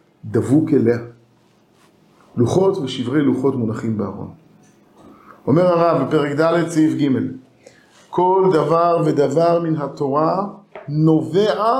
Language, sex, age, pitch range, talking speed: Hebrew, male, 50-69, 155-215 Hz, 95 wpm